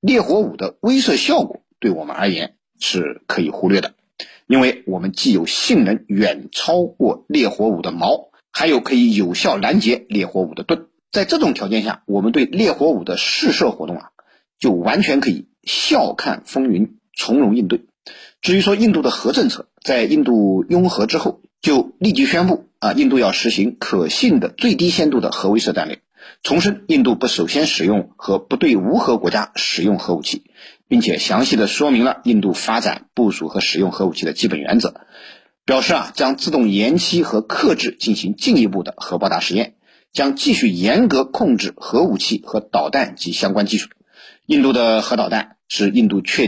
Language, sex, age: Chinese, male, 50-69